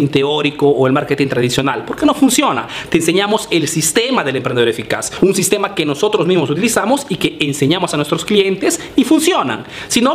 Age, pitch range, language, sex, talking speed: 30-49, 145-205 Hz, Spanish, male, 185 wpm